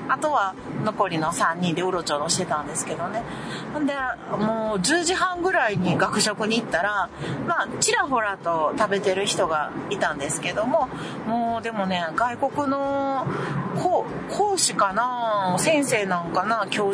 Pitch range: 195-300 Hz